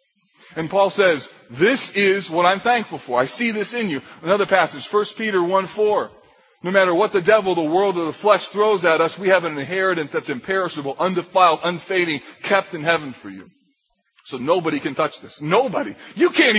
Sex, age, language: male, 30-49, English